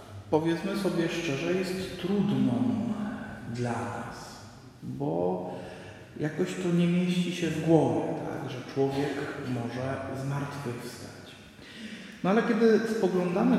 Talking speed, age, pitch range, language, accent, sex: 100 wpm, 40-59, 135-185 Hz, Polish, native, male